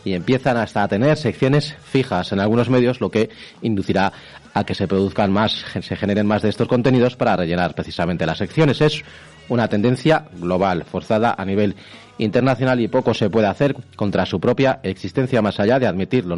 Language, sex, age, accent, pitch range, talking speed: Spanish, male, 30-49, Spanish, 95-130 Hz, 185 wpm